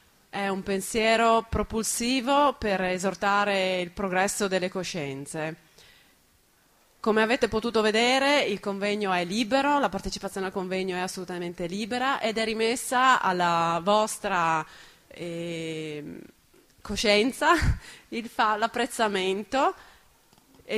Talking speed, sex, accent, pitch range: 105 wpm, female, native, 175-225 Hz